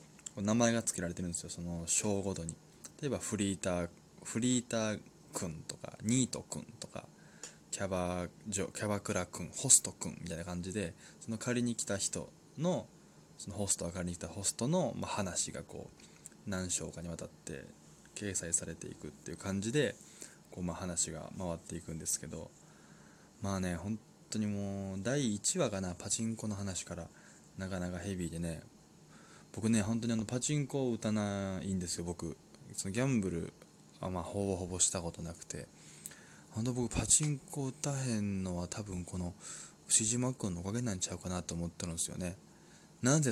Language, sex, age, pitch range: Japanese, male, 20-39, 90-110 Hz